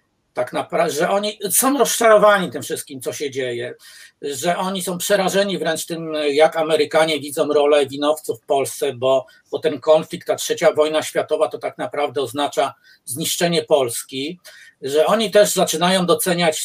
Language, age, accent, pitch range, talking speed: Polish, 50-69, native, 150-210 Hz, 155 wpm